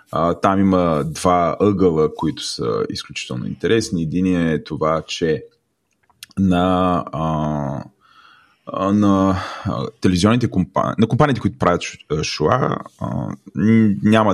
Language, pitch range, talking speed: Bulgarian, 80-105 Hz, 95 wpm